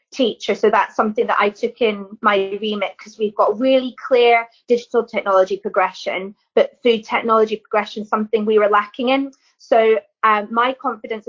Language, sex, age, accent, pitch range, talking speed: English, female, 20-39, British, 210-260 Hz, 165 wpm